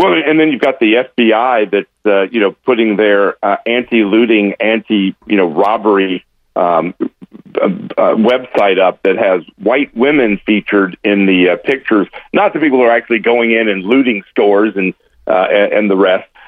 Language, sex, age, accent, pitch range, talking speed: English, male, 50-69, American, 100-135 Hz, 175 wpm